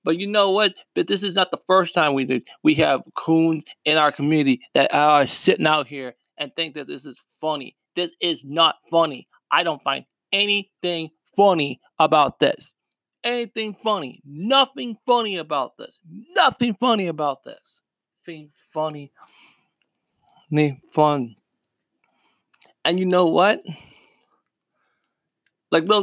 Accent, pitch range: American, 150-195 Hz